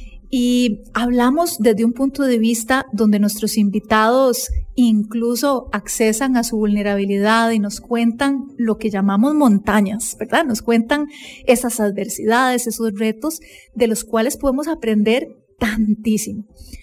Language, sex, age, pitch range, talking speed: English, female, 30-49, 215-255 Hz, 125 wpm